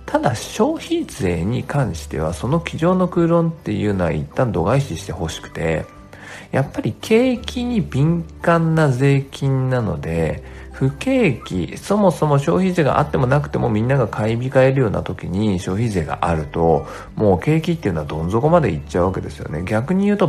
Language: Japanese